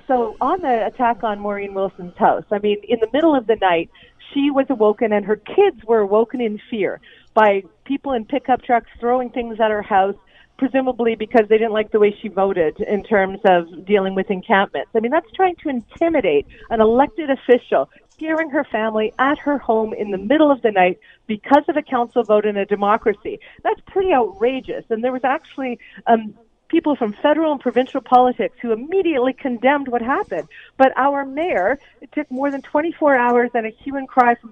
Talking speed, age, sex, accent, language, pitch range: 195 wpm, 40-59, female, American, English, 215-275 Hz